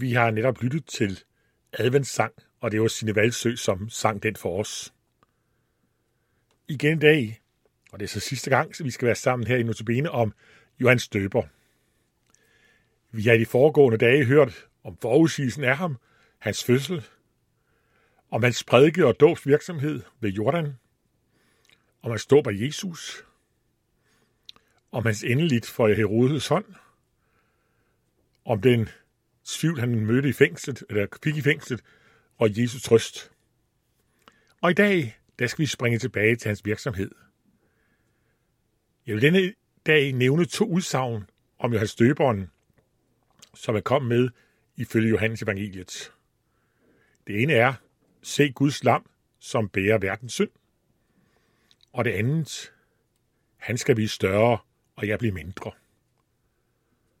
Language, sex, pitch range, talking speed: Danish, male, 110-140 Hz, 135 wpm